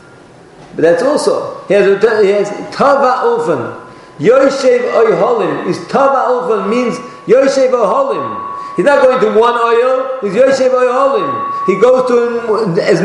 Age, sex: 50-69, male